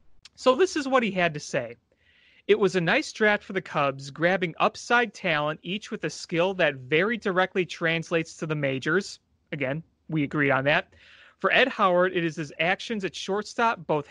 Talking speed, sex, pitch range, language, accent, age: 190 wpm, male, 155-200 Hz, English, American, 30-49